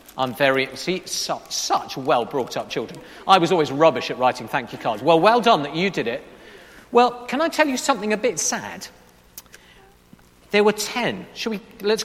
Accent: British